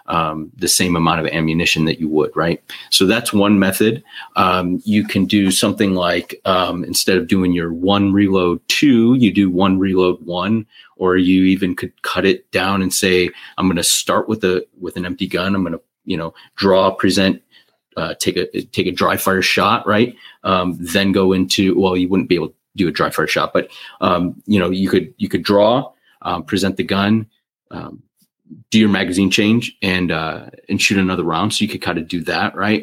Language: English